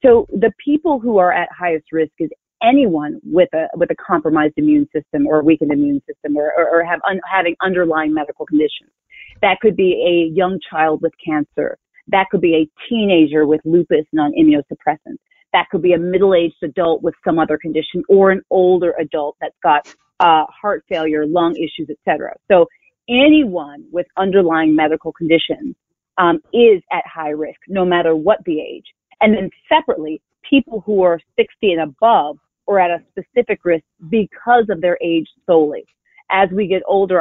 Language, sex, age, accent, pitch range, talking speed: English, female, 30-49, American, 160-230 Hz, 175 wpm